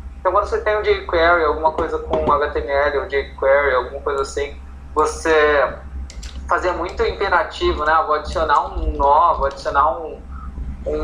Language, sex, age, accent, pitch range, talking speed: Portuguese, male, 20-39, Brazilian, 125-175 Hz, 145 wpm